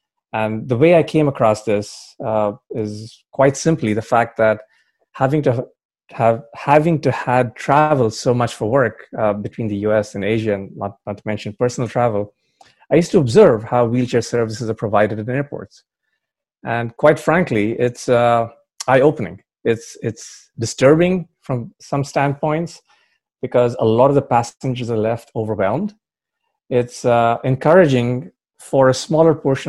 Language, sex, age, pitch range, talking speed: English, male, 30-49, 110-140 Hz, 160 wpm